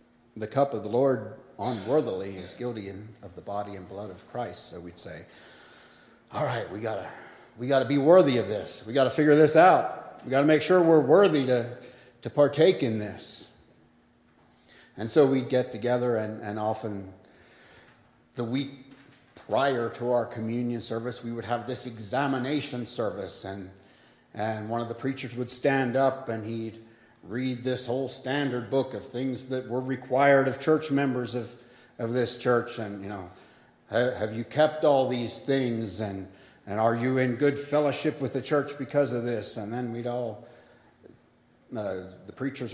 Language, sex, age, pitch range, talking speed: English, male, 40-59, 110-135 Hz, 175 wpm